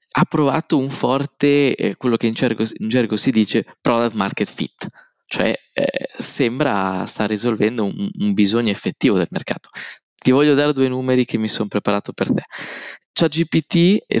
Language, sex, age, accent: Italian, male, 20-39, native